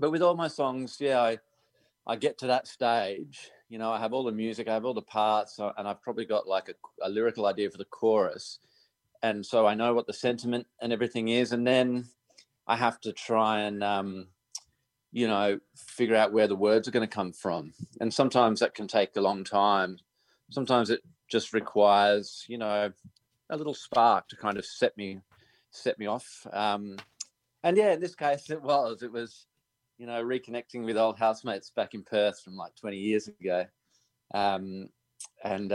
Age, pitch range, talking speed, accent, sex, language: 30-49, 100-125 Hz, 195 wpm, Australian, male, English